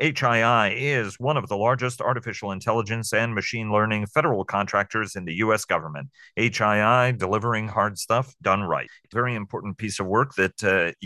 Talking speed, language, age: 165 wpm, English, 40-59